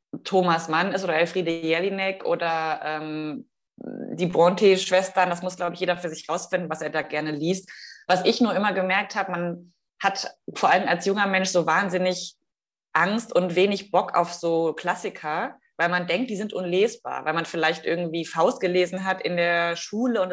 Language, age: German, 20-39